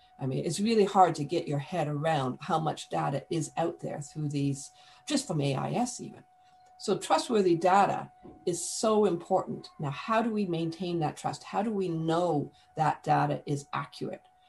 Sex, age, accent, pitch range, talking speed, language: female, 50-69, American, 150-205 Hz, 180 wpm, English